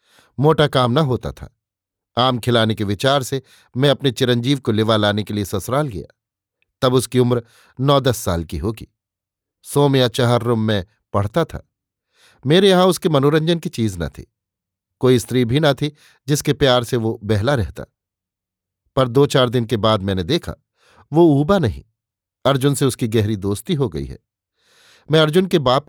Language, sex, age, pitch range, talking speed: Hindi, male, 50-69, 110-145 Hz, 180 wpm